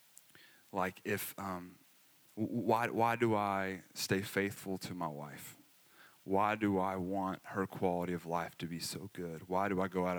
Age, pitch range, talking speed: 20-39, 95-110 Hz, 170 wpm